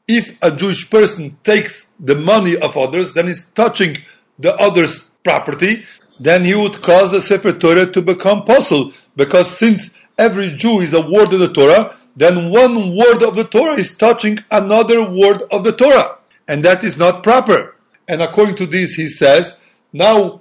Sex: male